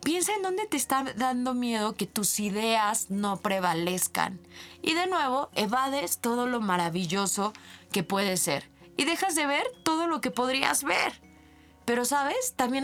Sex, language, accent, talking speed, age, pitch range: female, Spanish, Mexican, 160 wpm, 20-39, 195-280 Hz